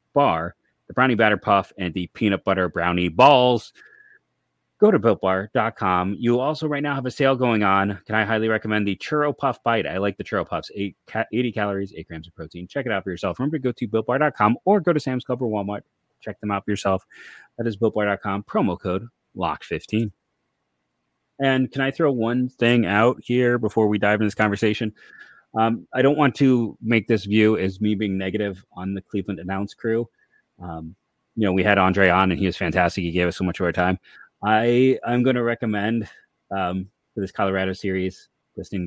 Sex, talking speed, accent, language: male, 205 wpm, American, English